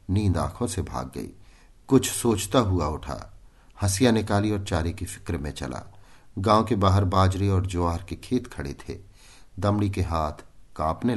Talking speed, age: 165 wpm, 50-69